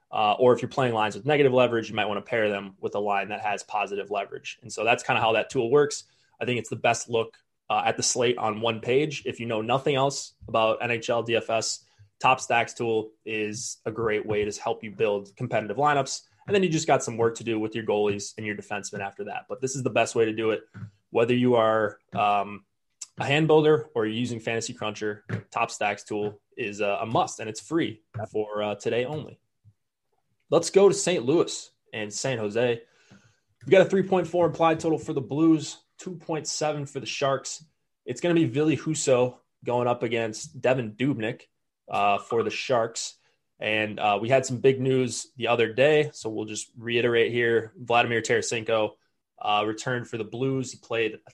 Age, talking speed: 20-39, 210 wpm